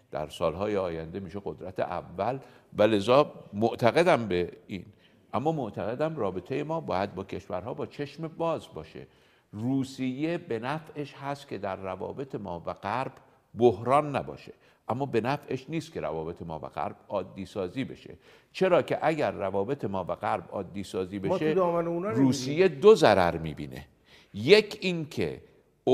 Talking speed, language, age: 145 wpm, Persian, 60-79